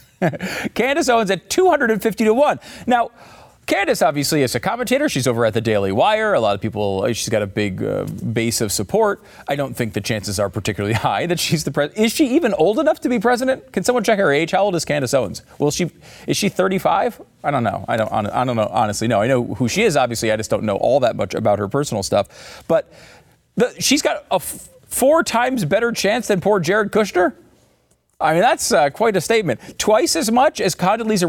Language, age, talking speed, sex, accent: English, 40-59, 225 wpm, male, American